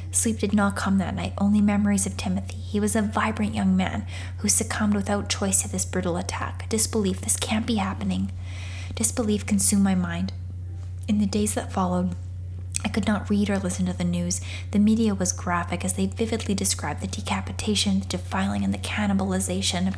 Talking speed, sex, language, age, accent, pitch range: 190 wpm, female, English, 10-29, American, 90-100 Hz